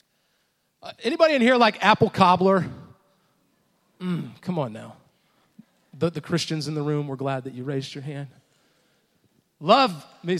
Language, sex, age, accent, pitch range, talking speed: English, male, 40-59, American, 165-225 Hz, 150 wpm